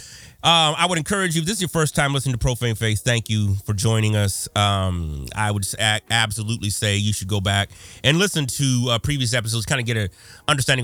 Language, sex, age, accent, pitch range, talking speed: English, male, 30-49, American, 105-125 Hz, 220 wpm